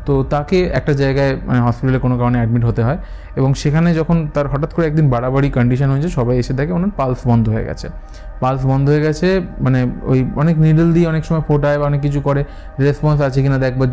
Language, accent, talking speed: Bengali, native, 210 wpm